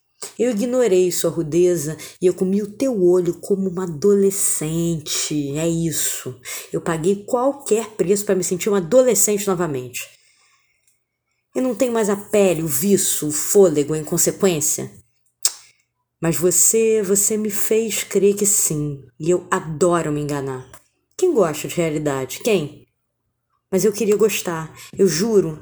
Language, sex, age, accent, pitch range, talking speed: Portuguese, female, 20-39, Brazilian, 165-215 Hz, 145 wpm